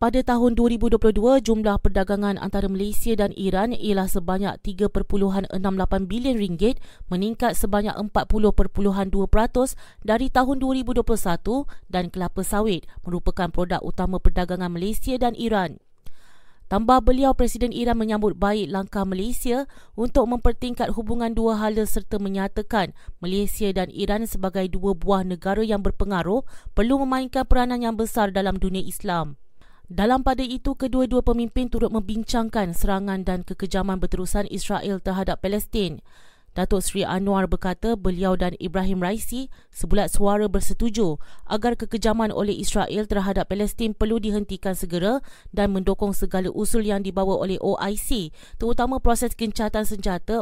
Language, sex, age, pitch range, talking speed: Malay, female, 20-39, 190-230 Hz, 130 wpm